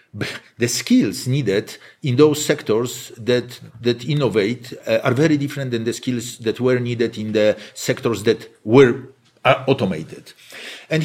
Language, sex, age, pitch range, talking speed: English, male, 50-69, 120-160 Hz, 145 wpm